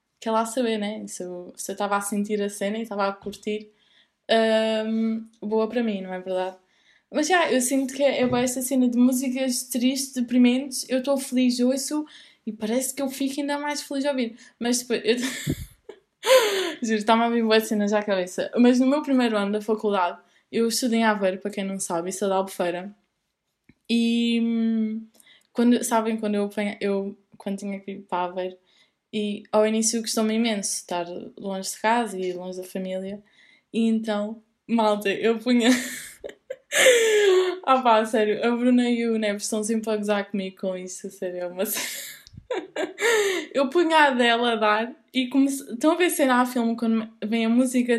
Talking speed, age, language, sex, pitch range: 185 wpm, 10-29, Portuguese, female, 205-255 Hz